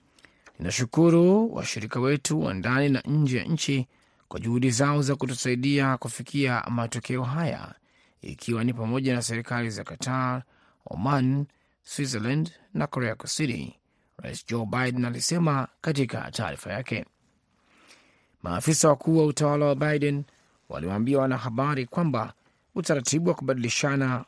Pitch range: 120-150 Hz